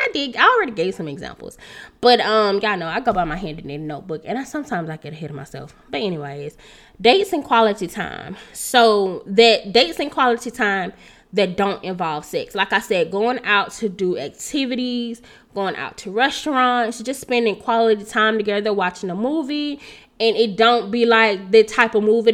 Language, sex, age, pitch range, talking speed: English, female, 10-29, 195-230 Hz, 195 wpm